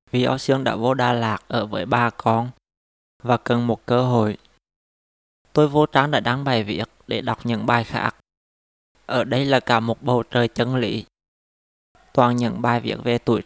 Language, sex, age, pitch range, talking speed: Vietnamese, male, 20-39, 110-130 Hz, 190 wpm